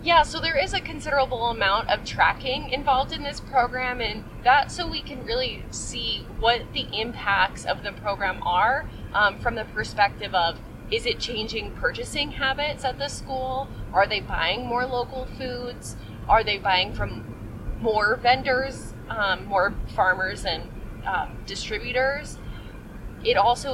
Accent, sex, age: American, female, 20-39